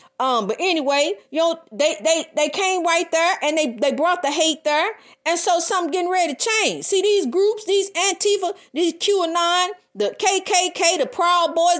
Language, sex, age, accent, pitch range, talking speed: English, female, 40-59, American, 285-355 Hz, 190 wpm